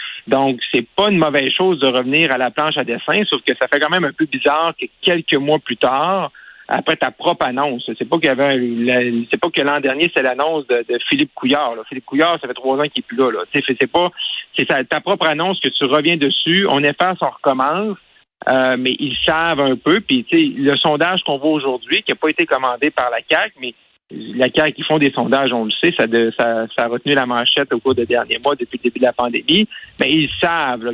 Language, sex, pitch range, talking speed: French, male, 125-165 Hz, 245 wpm